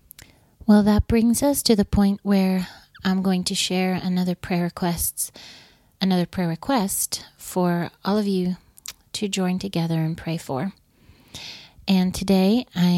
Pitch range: 170-195 Hz